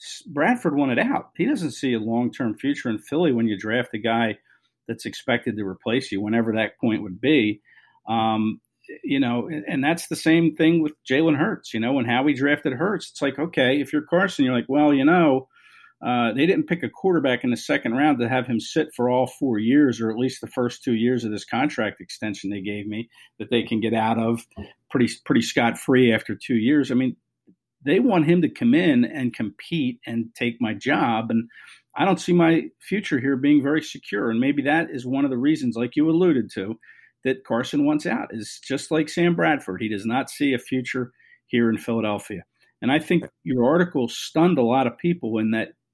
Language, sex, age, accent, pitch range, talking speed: English, male, 50-69, American, 115-155 Hz, 220 wpm